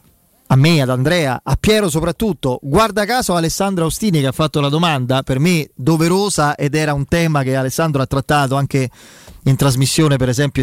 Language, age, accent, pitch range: Italian, 30-49, native, 135-180 Hz